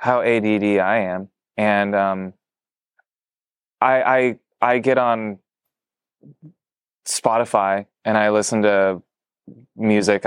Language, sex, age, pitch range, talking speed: English, male, 20-39, 90-105 Hz, 100 wpm